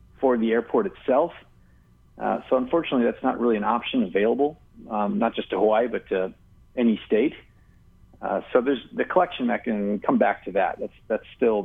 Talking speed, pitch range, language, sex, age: 180 wpm, 100-130 Hz, English, male, 40-59